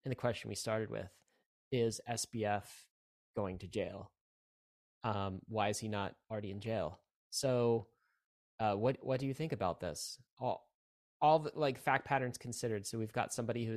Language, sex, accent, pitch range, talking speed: English, male, American, 105-125 Hz, 175 wpm